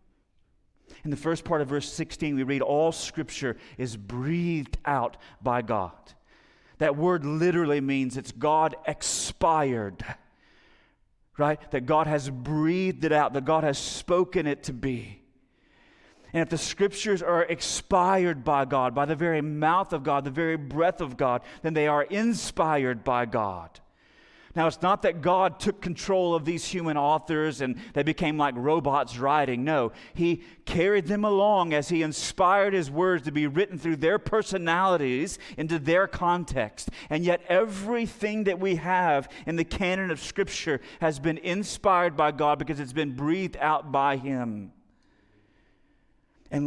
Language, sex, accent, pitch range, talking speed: English, male, American, 140-175 Hz, 155 wpm